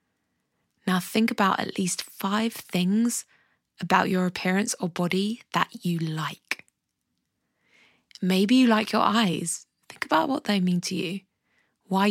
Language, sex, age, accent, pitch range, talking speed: English, female, 20-39, British, 175-215 Hz, 140 wpm